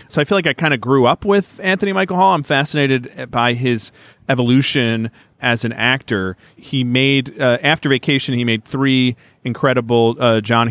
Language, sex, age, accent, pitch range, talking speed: English, male, 40-59, American, 110-135 Hz, 180 wpm